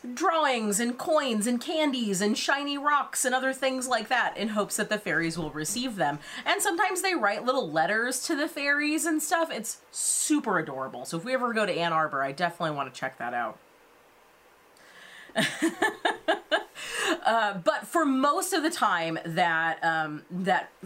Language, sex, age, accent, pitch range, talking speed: English, female, 30-49, American, 165-230 Hz, 175 wpm